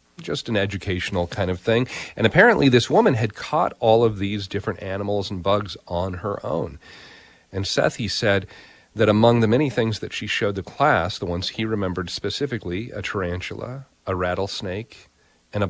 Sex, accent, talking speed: male, American, 180 wpm